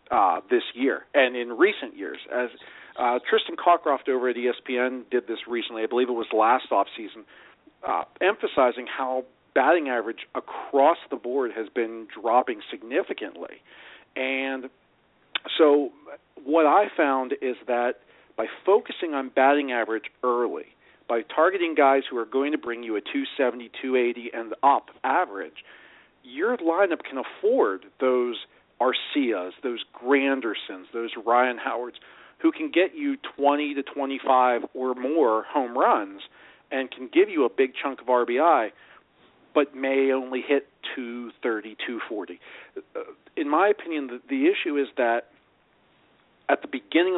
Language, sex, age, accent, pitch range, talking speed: English, male, 40-59, American, 120-155 Hz, 140 wpm